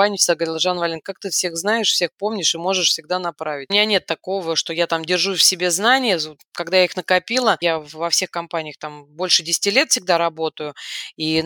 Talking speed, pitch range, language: 210 wpm, 165-195 Hz, Russian